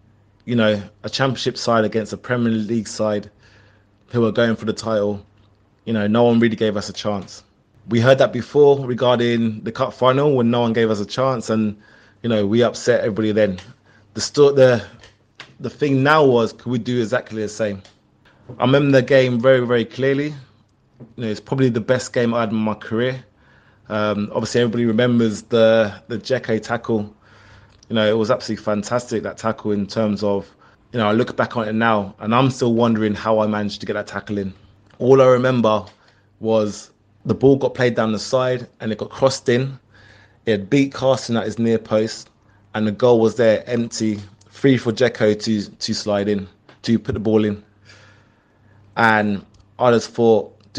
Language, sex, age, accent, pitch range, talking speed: English, male, 20-39, British, 105-120 Hz, 195 wpm